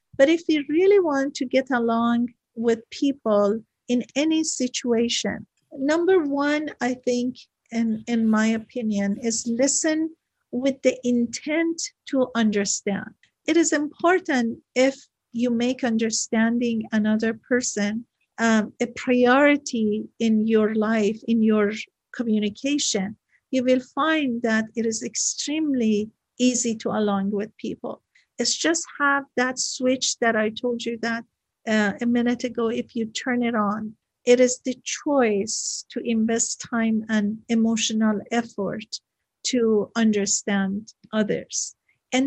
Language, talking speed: English, 130 wpm